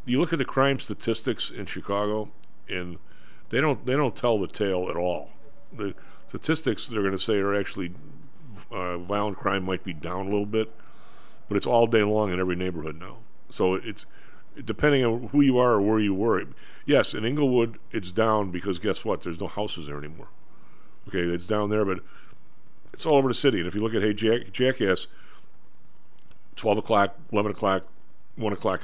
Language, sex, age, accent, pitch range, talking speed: English, male, 50-69, American, 90-120 Hz, 190 wpm